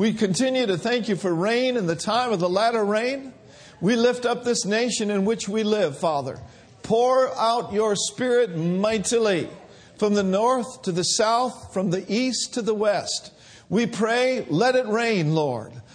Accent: American